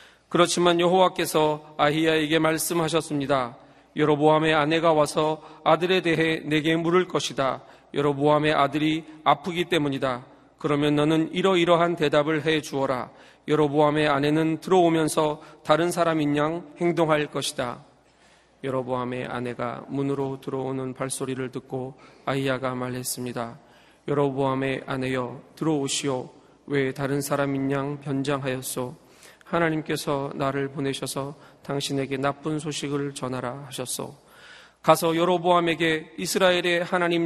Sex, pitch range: male, 135-160 Hz